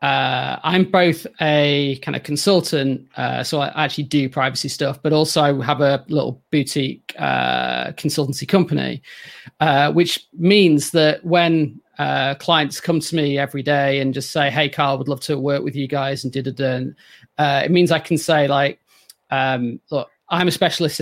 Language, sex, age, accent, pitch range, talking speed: English, male, 30-49, British, 140-165 Hz, 180 wpm